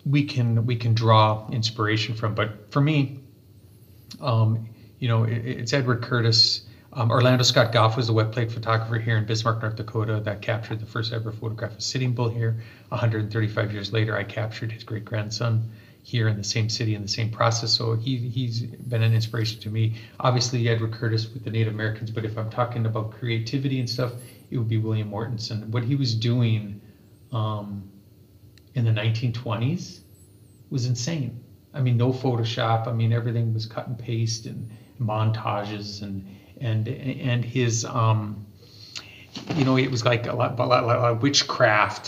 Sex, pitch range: male, 110-125 Hz